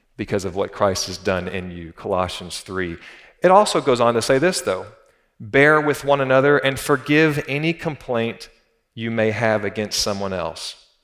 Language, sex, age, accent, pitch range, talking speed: English, male, 40-59, American, 90-120 Hz, 175 wpm